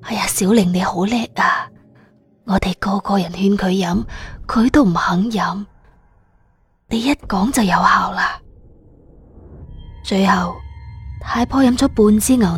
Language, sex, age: Chinese, female, 20-39